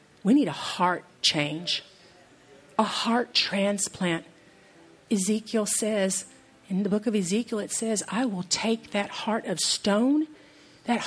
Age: 50-69